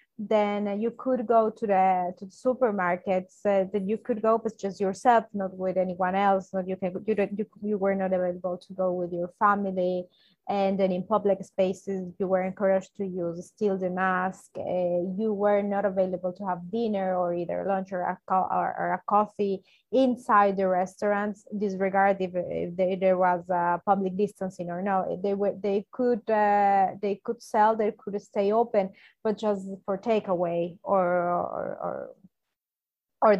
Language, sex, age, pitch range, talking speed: English, female, 20-39, 185-210 Hz, 180 wpm